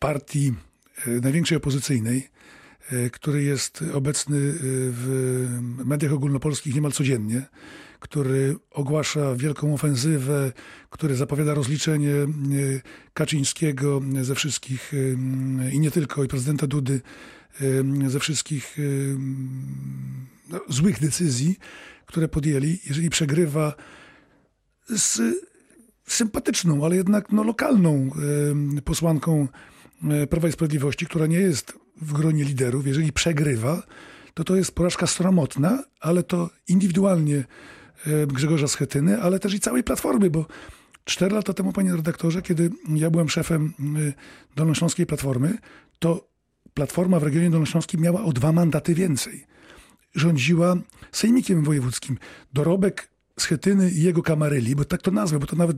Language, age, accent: Polish, 40-59, native